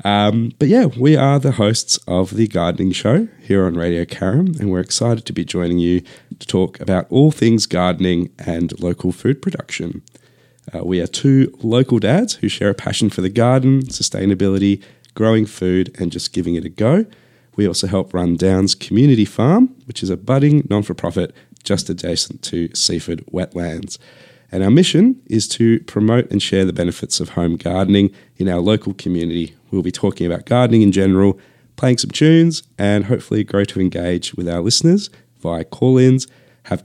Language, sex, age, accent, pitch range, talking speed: English, male, 30-49, Australian, 90-120 Hz, 180 wpm